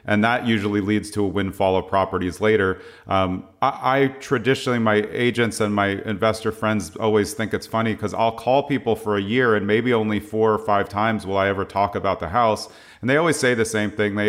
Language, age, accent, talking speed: English, 30-49, American, 225 wpm